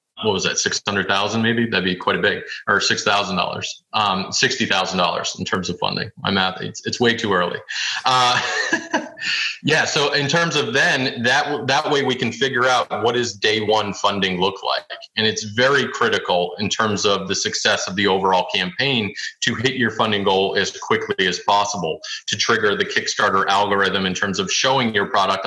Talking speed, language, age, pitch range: 185 wpm, English, 30-49, 100-120 Hz